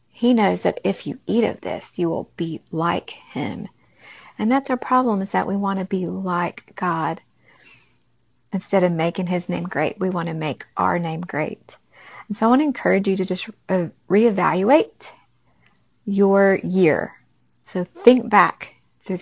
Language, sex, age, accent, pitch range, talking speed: English, female, 40-59, American, 170-200 Hz, 170 wpm